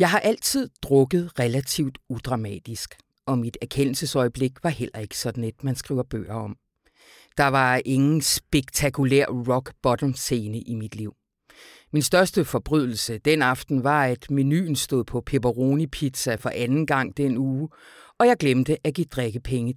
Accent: native